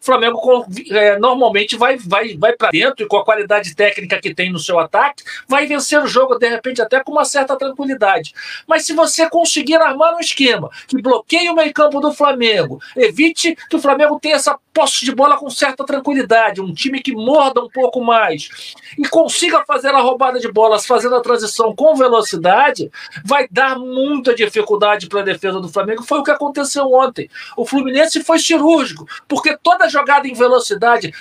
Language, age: Portuguese, 50-69